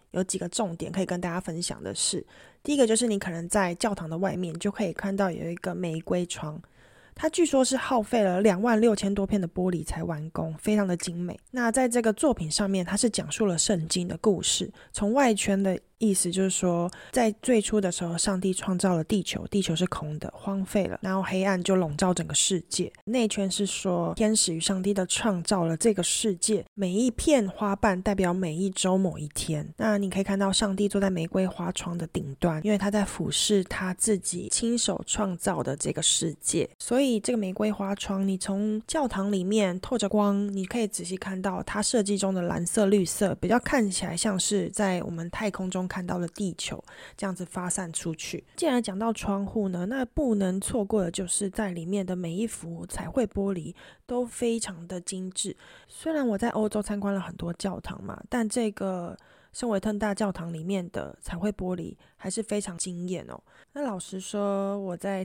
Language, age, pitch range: Chinese, 20-39, 180-215 Hz